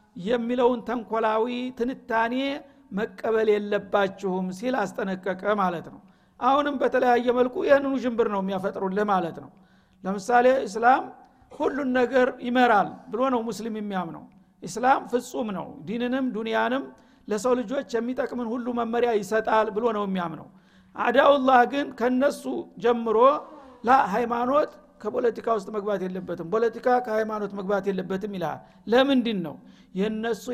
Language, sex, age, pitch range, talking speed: Amharic, male, 50-69, 205-250 Hz, 100 wpm